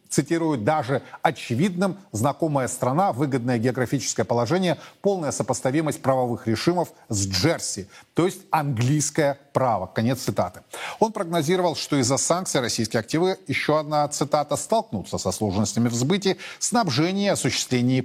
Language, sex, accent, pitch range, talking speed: Russian, male, native, 115-155 Hz, 120 wpm